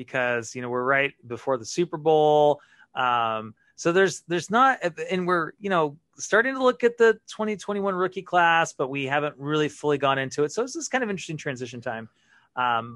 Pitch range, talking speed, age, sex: 130-175 Hz, 200 wpm, 30-49, male